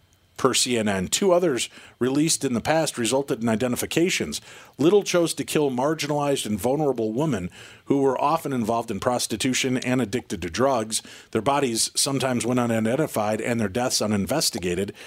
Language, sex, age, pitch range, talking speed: English, male, 50-69, 115-145 Hz, 150 wpm